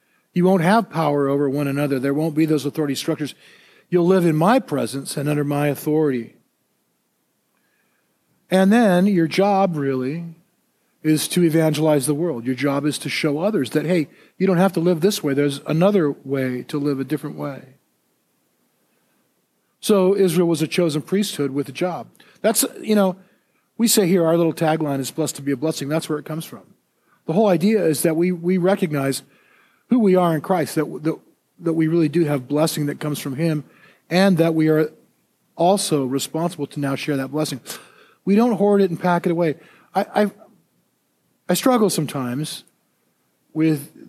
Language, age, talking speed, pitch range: English, 50-69, 180 wpm, 140-180 Hz